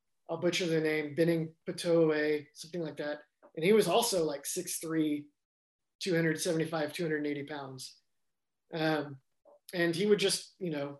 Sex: male